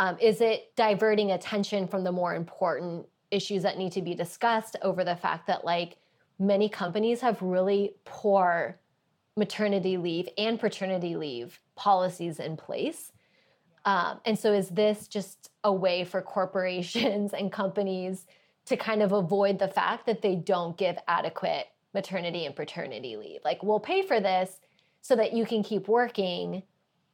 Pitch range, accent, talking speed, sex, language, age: 185-215 Hz, American, 155 wpm, female, English, 20-39